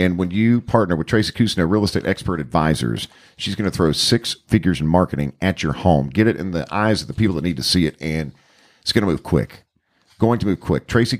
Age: 50-69